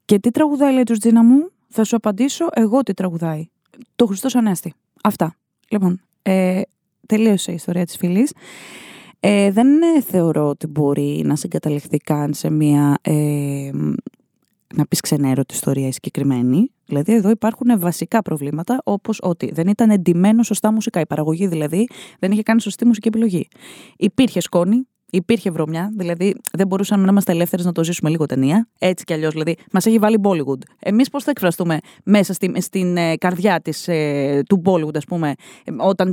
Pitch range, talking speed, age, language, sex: 170-245 Hz, 170 wpm, 20-39, Greek, female